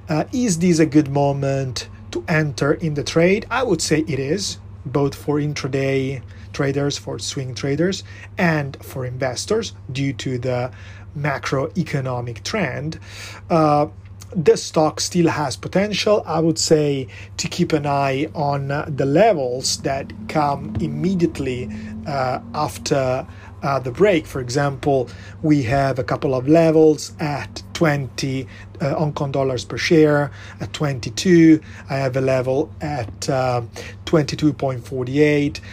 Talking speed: 140 wpm